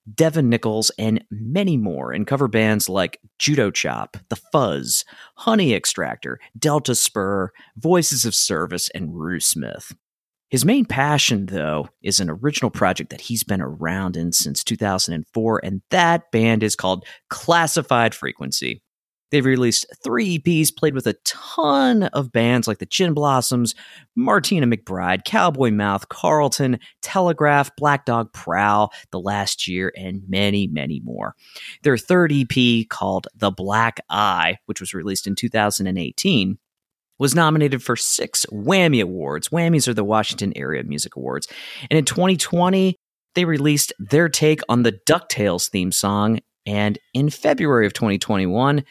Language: English